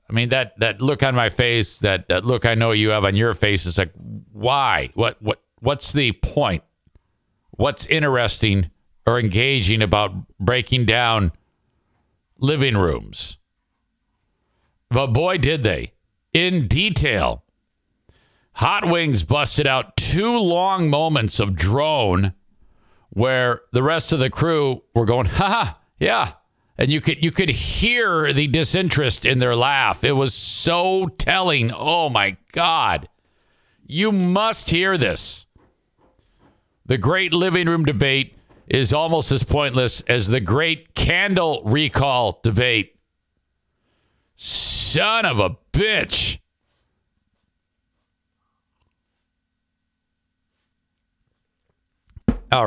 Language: English